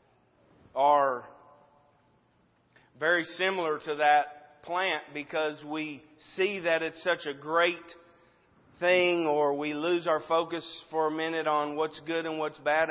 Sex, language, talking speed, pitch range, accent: male, English, 135 wpm, 150-180 Hz, American